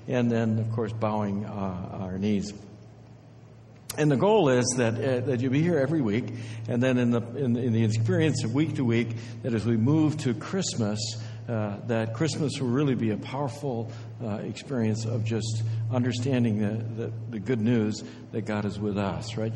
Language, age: English, 60-79